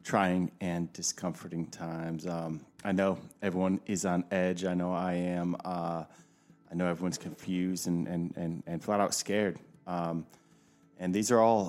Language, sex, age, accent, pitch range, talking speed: English, male, 30-49, American, 85-100 Hz, 165 wpm